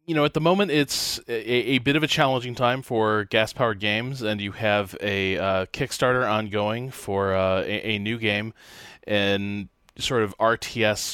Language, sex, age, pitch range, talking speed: English, male, 20-39, 105-145 Hz, 180 wpm